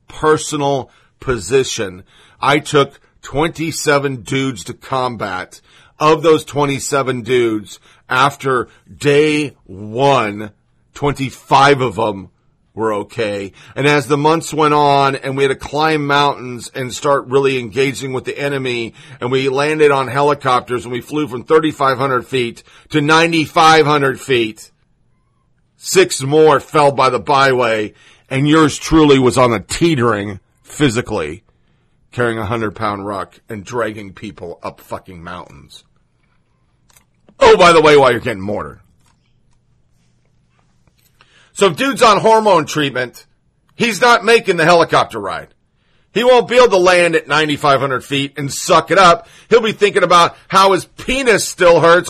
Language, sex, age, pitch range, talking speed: English, male, 40-59, 125-155 Hz, 135 wpm